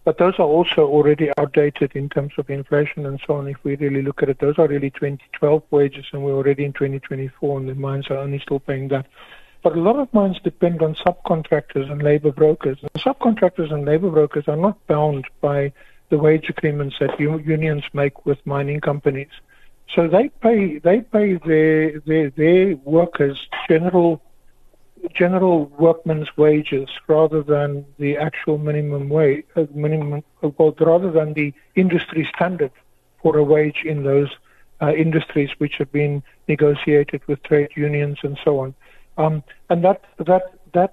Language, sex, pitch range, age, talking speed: English, male, 145-165 Hz, 60-79, 170 wpm